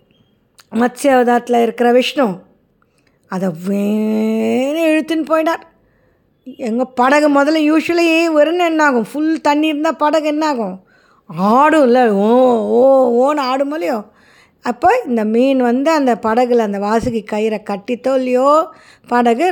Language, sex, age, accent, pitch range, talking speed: Tamil, female, 20-39, native, 220-295 Hz, 110 wpm